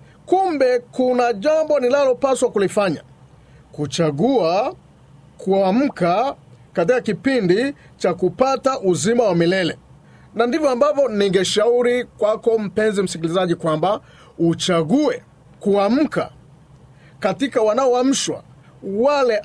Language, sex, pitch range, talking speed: Swahili, male, 185-250 Hz, 90 wpm